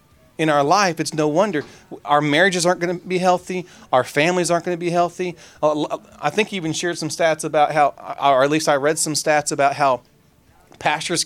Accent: American